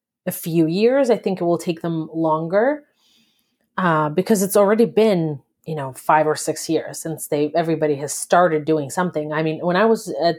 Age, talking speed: 30-49, 195 wpm